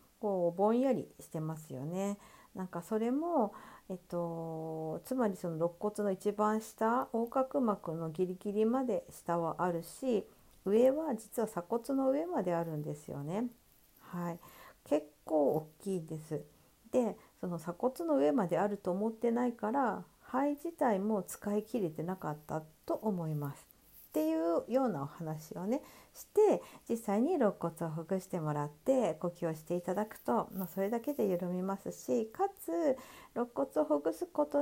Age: 50-69